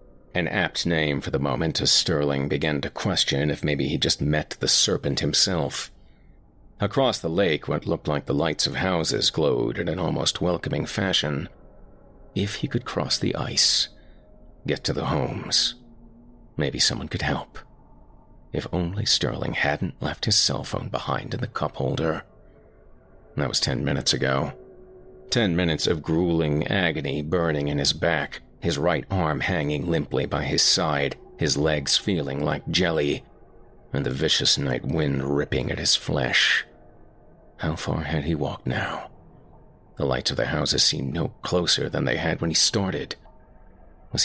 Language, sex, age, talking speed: English, male, 40-59, 160 wpm